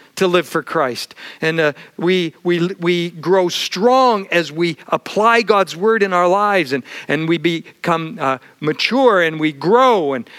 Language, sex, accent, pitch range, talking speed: English, male, American, 155-205 Hz, 170 wpm